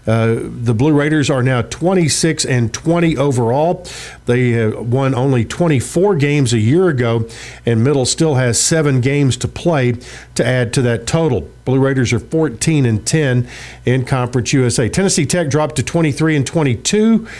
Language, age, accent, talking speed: English, 50-69, American, 165 wpm